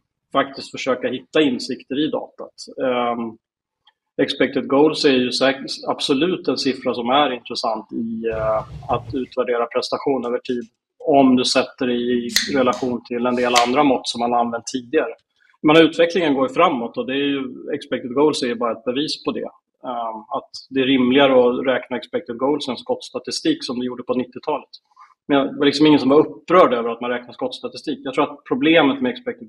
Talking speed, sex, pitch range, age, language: 185 wpm, male, 120-135 Hz, 30-49, Swedish